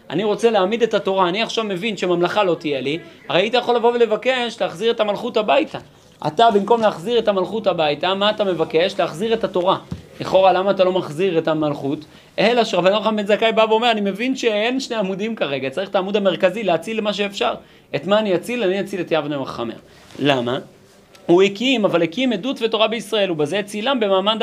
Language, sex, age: Hebrew, male, 30-49